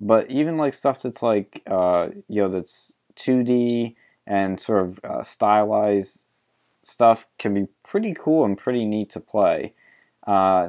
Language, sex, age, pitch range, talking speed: English, male, 20-39, 90-110 Hz, 155 wpm